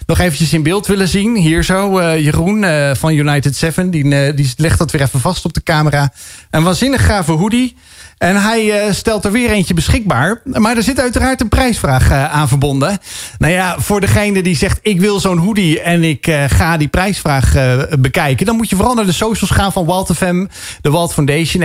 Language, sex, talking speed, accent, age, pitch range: Dutch, male, 195 wpm, Dutch, 40-59, 150-200 Hz